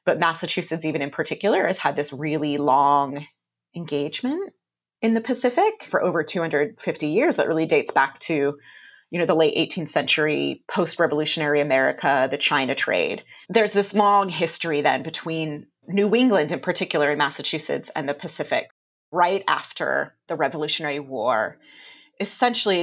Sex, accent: female, American